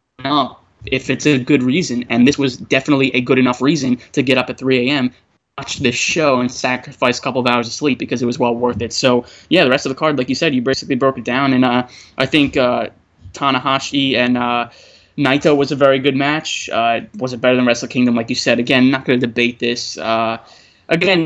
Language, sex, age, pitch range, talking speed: English, male, 20-39, 125-150 Hz, 235 wpm